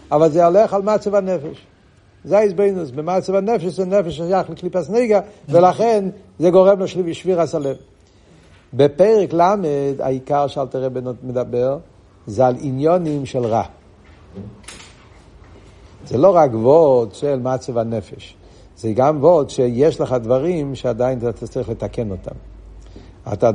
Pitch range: 110-155 Hz